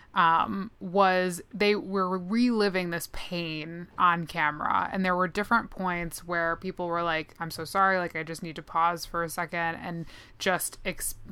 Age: 20-39